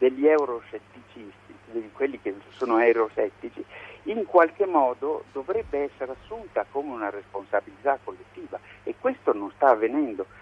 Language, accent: Italian, native